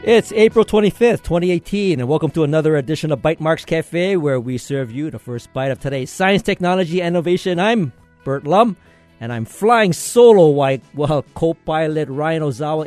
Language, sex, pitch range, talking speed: English, male, 135-185 Hz, 180 wpm